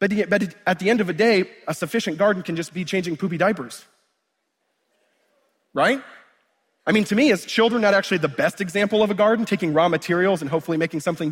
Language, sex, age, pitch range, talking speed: English, male, 30-49, 155-205 Hz, 200 wpm